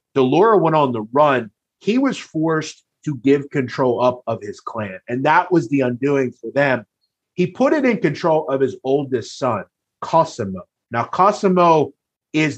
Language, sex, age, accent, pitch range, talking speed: English, male, 30-49, American, 125-150 Hz, 165 wpm